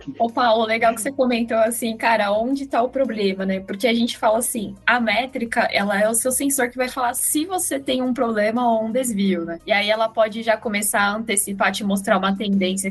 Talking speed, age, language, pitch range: 230 wpm, 10-29, Portuguese, 205-255 Hz